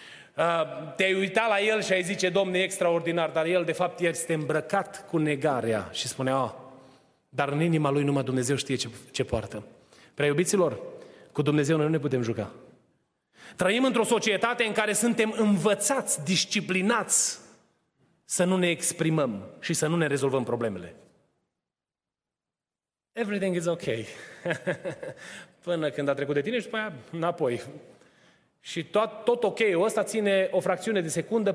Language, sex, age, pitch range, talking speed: Romanian, male, 30-49, 160-220 Hz, 155 wpm